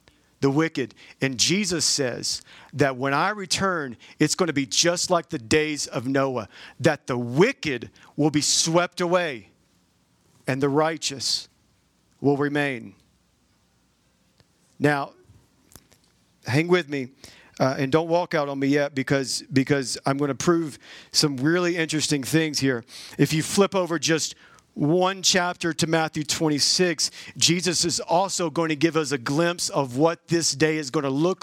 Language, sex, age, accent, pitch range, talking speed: English, male, 40-59, American, 140-175 Hz, 155 wpm